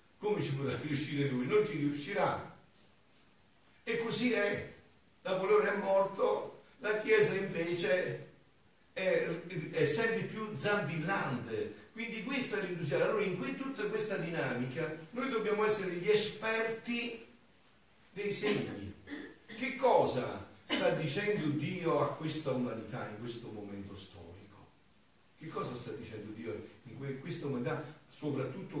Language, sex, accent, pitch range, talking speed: Italian, male, native, 110-180 Hz, 125 wpm